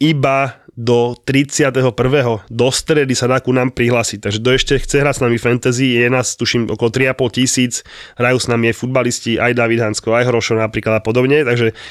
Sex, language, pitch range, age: male, Slovak, 115-135 Hz, 20-39